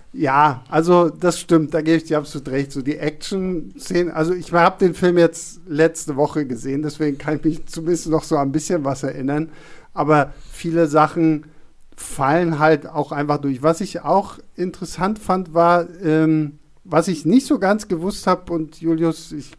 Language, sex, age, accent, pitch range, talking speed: German, male, 50-69, German, 150-180 Hz, 180 wpm